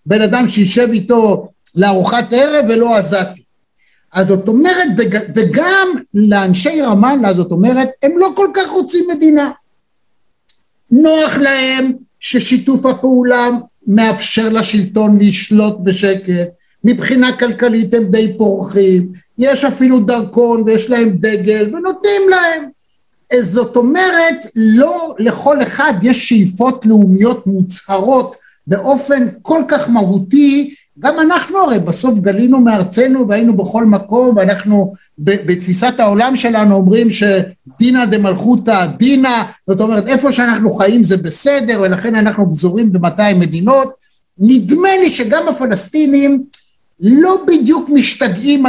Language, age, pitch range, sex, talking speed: Hebrew, 60-79, 200-265 Hz, male, 115 wpm